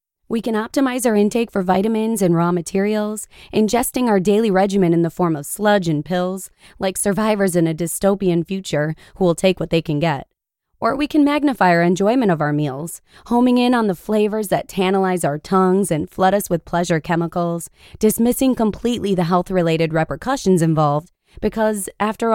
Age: 20-39